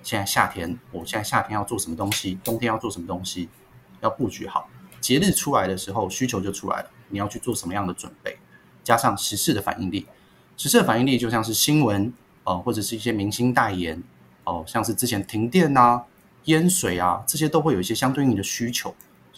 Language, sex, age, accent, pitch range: Chinese, male, 30-49, native, 95-125 Hz